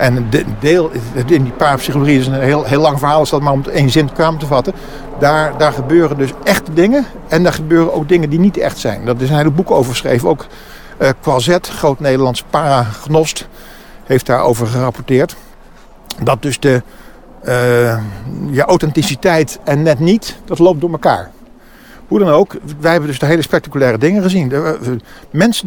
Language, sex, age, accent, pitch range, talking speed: Dutch, male, 50-69, Dutch, 125-165 Hz, 190 wpm